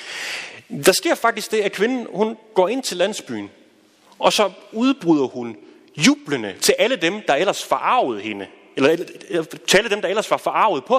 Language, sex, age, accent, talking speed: Danish, male, 30-49, native, 170 wpm